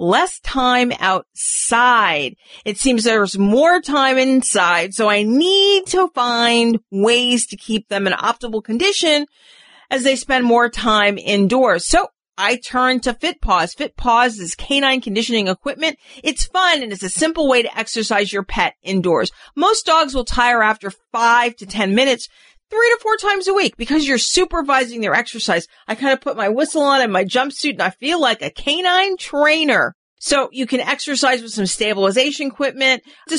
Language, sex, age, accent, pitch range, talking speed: English, female, 40-59, American, 200-270 Hz, 170 wpm